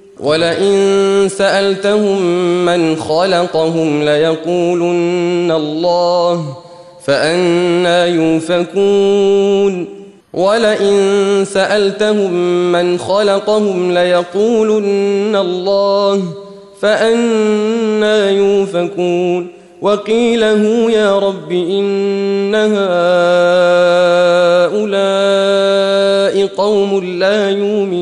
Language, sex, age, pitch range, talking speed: Indonesian, male, 20-39, 165-200 Hz, 45 wpm